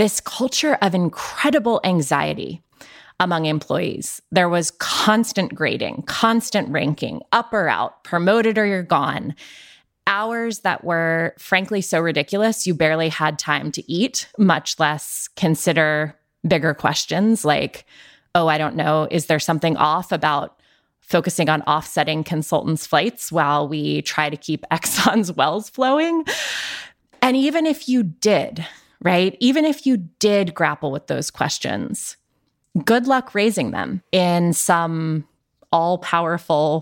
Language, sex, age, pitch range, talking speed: English, female, 20-39, 160-220 Hz, 130 wpm